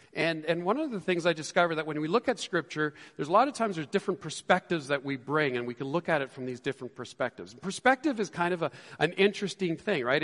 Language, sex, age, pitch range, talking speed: English, male, 40-59, 135-190 Hz, 260 wpm